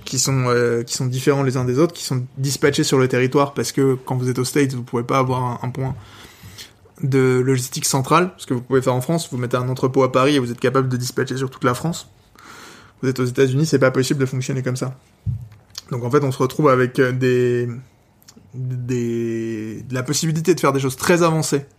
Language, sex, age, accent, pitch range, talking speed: French, male, 20-39, French, 125-140 Hz, 230 wpm